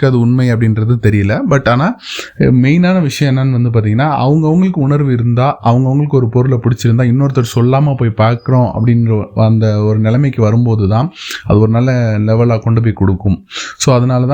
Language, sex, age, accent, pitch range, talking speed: Tamil, male, 20-39, native, 110-130 Hz, 120 wpm